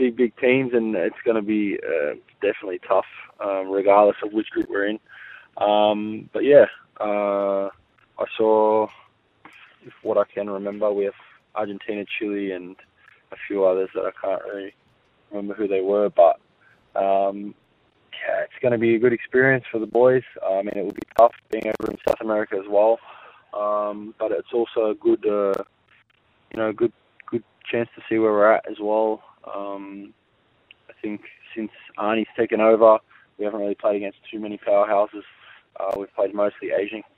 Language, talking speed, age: English, 175 wpm, 20-39